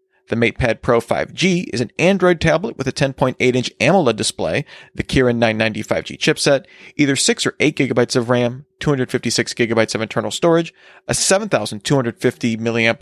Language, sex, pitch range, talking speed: English, male, 120-155 Hz, 150 wpm